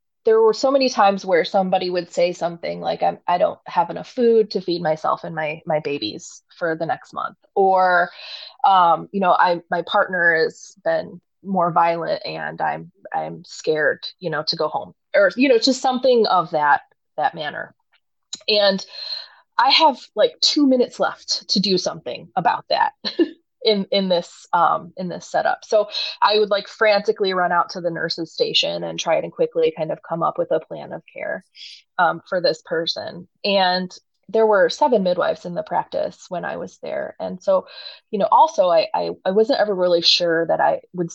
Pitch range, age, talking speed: 175-280 Hz, 20-39, 190 wpm